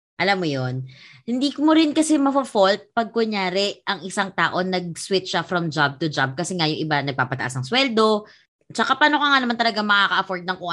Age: 20-39